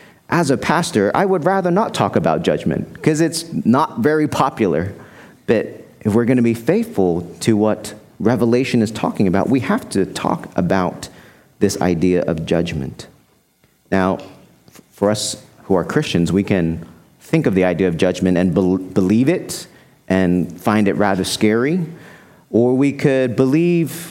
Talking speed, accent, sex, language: 155 wpm, American, male, English